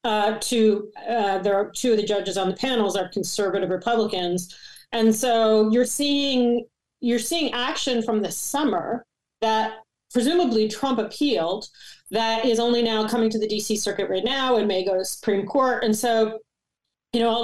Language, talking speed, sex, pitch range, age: English, 175 wpm, female, 195-230 Hz, 40-59